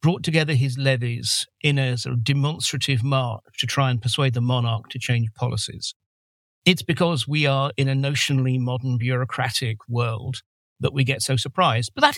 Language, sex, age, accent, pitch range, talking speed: English, male, 50-69, British, 120-150 Hz, 175 wpm